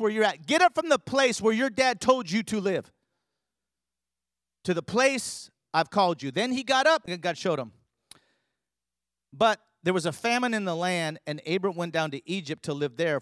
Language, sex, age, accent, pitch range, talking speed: English, male, 40-59, American, 135-205 Hz, 210 wpm